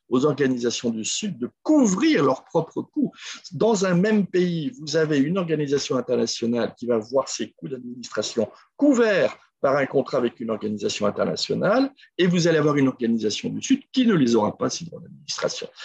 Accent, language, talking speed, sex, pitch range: French, French, 180 wpm, male, 130-205 Hz